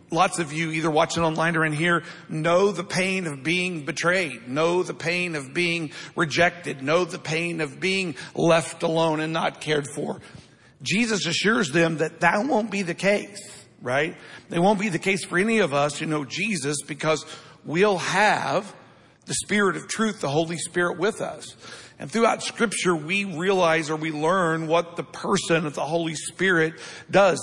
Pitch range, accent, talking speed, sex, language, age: 150-180 Hz, American, 180 wpm, male, English, 50-69